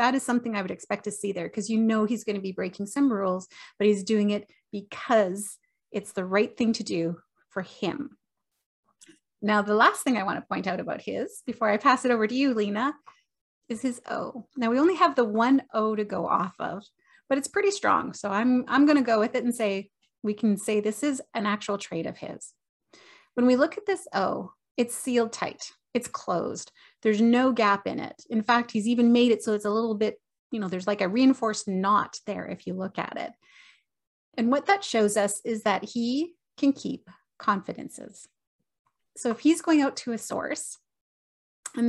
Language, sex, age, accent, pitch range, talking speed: English, female, 30-49, American, 210-265 Hz, 215 wpm